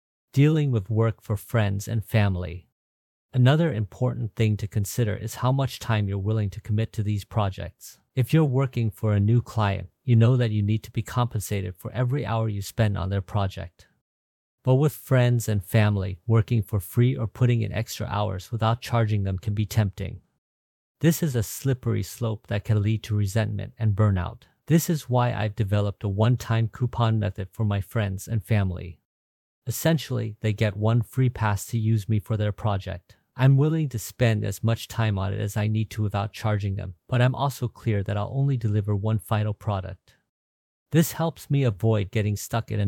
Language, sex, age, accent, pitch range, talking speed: English, male, 50-69, American, 100-120 Hz, 195 wpm